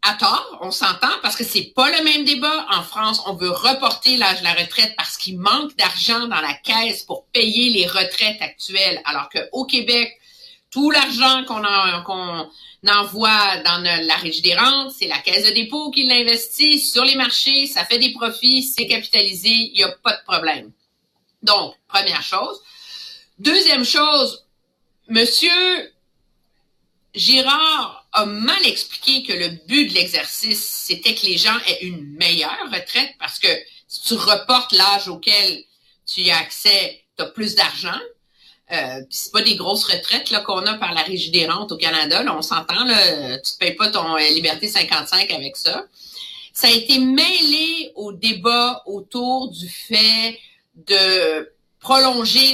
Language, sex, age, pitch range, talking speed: French, female, 50-69, 185-260 Hz, 170 wpm